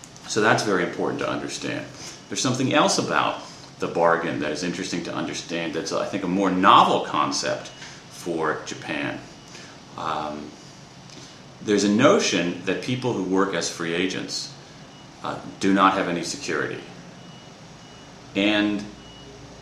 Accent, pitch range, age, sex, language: American, 90-110 Hz, 40-59, male, Japanese